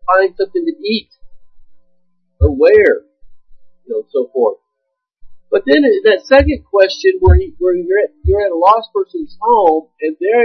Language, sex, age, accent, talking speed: English, male, 50-69, American, 155 wpm